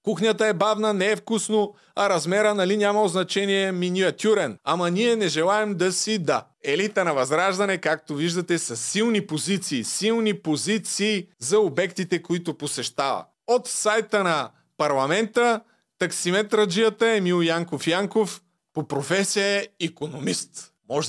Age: 30-49